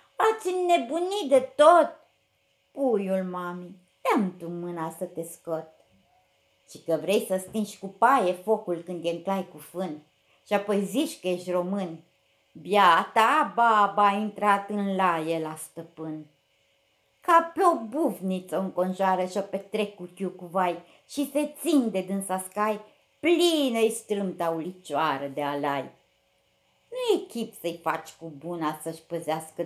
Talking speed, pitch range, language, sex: 135 wpm, 170-265 Hz, Romanian, female